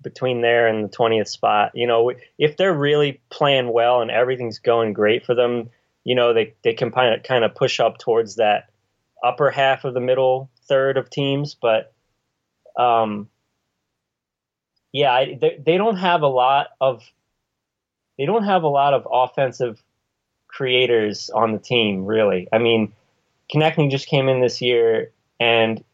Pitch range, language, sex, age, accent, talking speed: 115-150 Hz, English, male, 20-39, American, 165 wpm